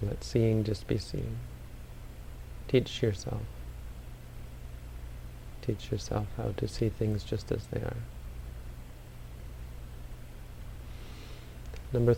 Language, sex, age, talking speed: English, male, 40-59, 90 wpm